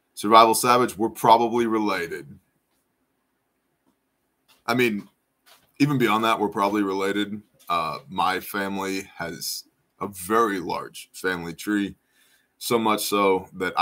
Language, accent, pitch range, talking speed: English, American, 95-120 Hz, 115 wpm